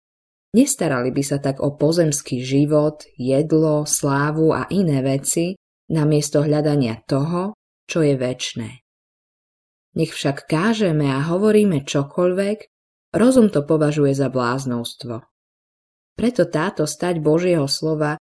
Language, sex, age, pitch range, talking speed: Slovak, female, 20-39, 140-175 Hz, 110 wpm